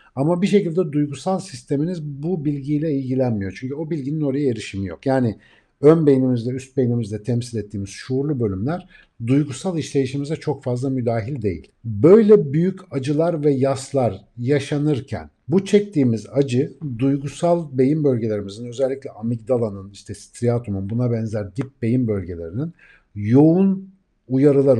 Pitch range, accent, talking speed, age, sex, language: 115-150 Hz, native, 125 wpm, 50-69, male, Turkish